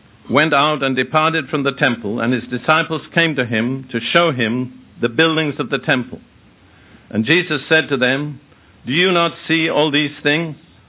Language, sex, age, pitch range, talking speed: English, male, 60-79, 125-155 Hz, 180 wpm